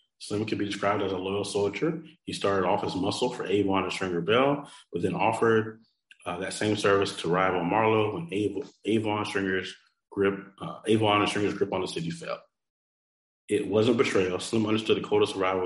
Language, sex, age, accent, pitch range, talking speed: English, male, 30-49, American, 95-110 Hz, 200 wpm